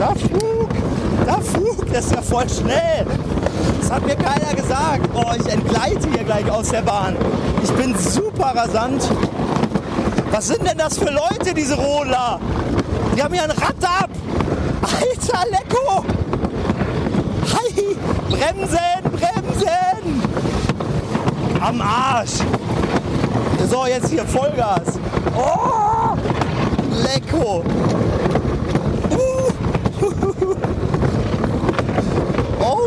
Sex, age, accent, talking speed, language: male, 40-59, German, 100 wpm, German